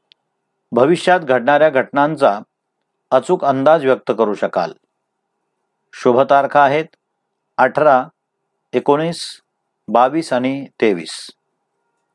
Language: Marathi